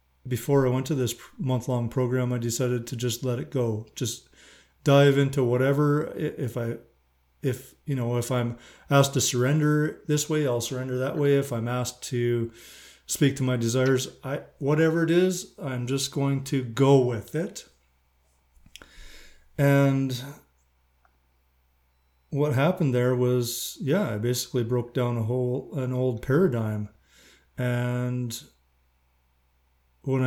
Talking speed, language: 140 wpm, English